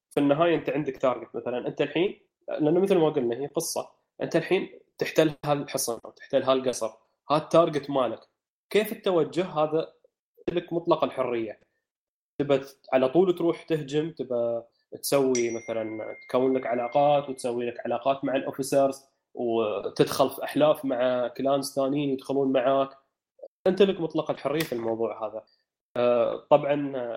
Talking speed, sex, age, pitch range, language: 135 wpm, male, 20-39, 120-160 Hz, Arabic